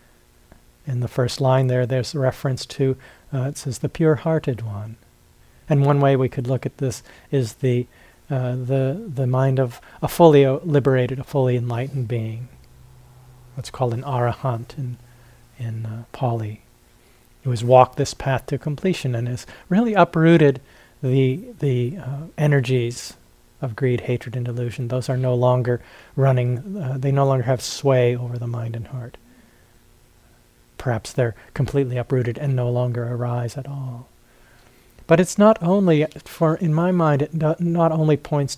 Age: 40-59